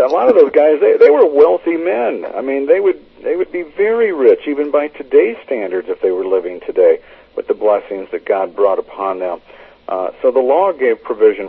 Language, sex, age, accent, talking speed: English, male, 50-69, American, 210 wpm